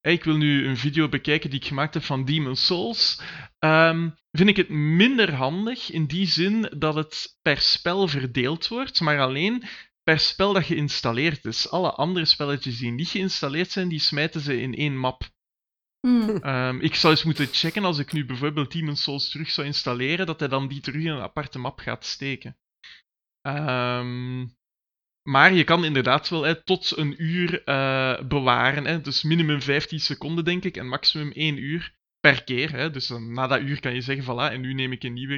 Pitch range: 130-160 Hz